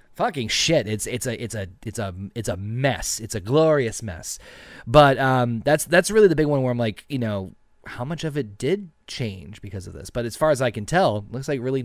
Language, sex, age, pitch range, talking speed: English, male, 30-49, 105-135 Hz, 245 wpm